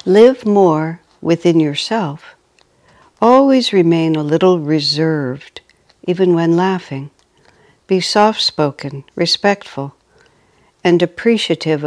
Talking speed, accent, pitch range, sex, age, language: 85 wpm, American, 145-165 Hz, female, 60-79, English